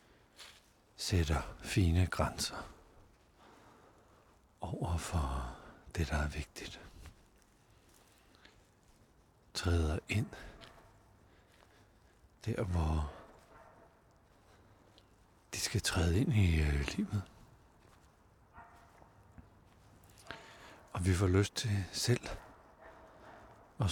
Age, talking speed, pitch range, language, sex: 60-79, 65 wpm, 85-105 Hz, Danish, male